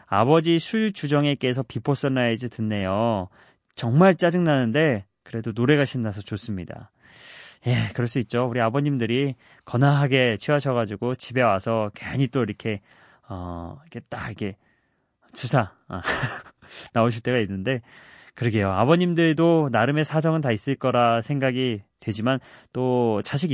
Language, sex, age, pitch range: Korean, male, 20-39, 110-145 Hz